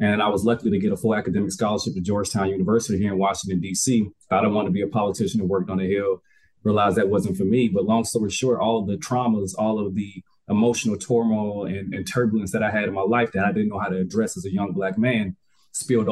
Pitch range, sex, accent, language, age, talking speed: 95-110 Hz, male, American, English, 30-49, 255 wpm